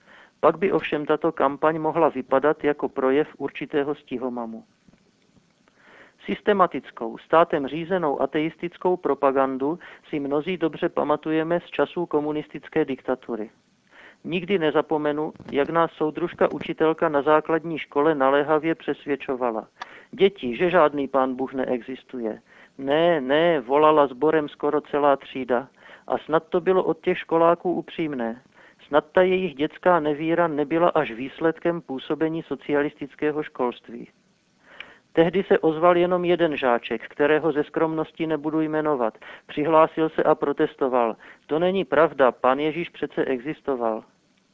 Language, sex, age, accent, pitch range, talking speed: Czech, male, 50-69, native, 140-165 Hz, 120 wpm